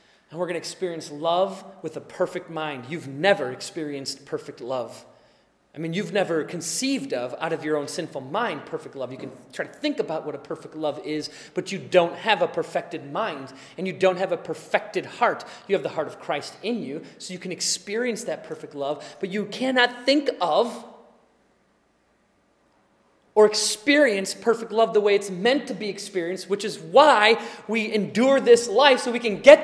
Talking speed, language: 195 wpm, English